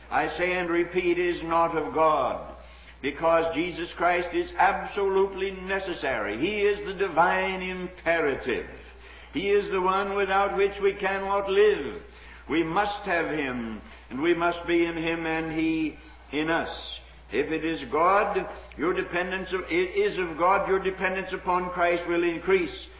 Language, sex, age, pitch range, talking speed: English, male, 60-79, 160-190 Hz, 155 wpm